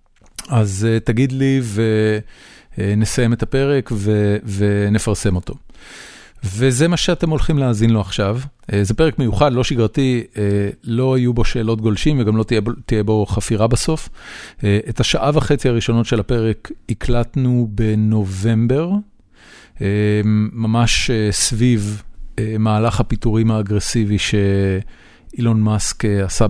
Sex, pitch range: male, 105-130 Hz